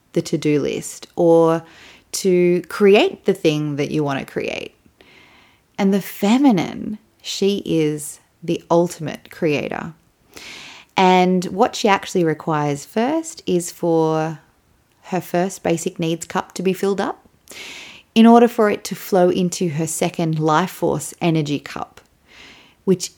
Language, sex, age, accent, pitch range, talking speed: English, female, 30-49, Australian, 155-190 Hz, 135 wpm